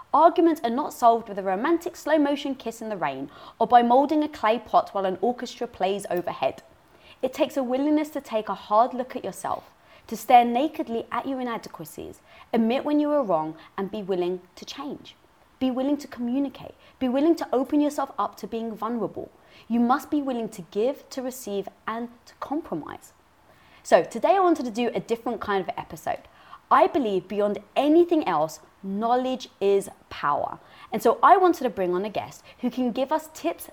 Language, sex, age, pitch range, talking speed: English, female, 20-39, 215-290 Hz, 190 wpm